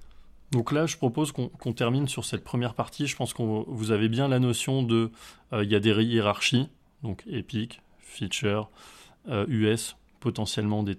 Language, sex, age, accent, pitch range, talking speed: French, male, 20-39, French, 110-135 Hz, 180 wpm